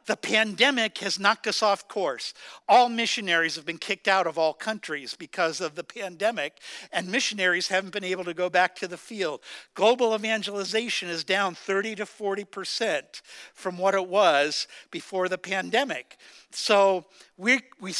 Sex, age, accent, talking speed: male, 60-79, American, 160 wpm